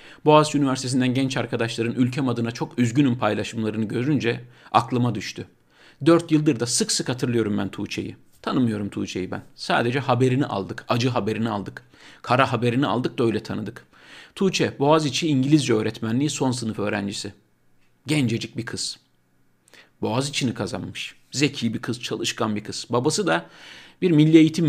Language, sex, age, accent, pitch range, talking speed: Turkish, male, 50-69, native, 110-150 Hz, 140 wpm